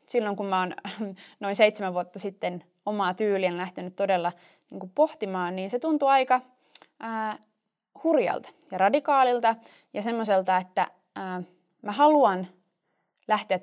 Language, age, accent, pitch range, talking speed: Finnish, 20-39, native, 180-235 Hz, 130 wpm